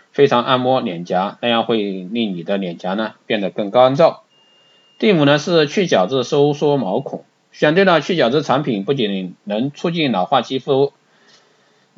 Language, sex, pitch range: Chinese, male, 120-160 Hz